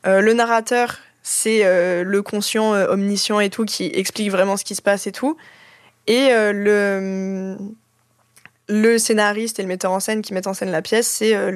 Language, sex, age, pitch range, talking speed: French, female, 20-39, 195-235 Hz, 205 wpm